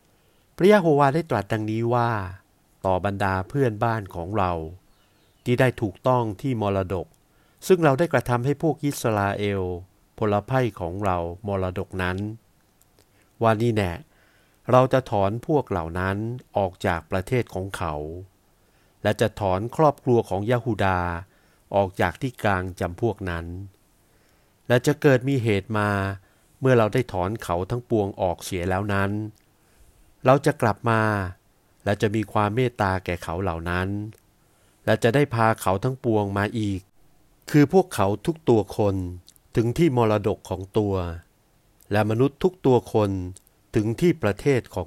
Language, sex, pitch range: Thai, male, 95-120 Hz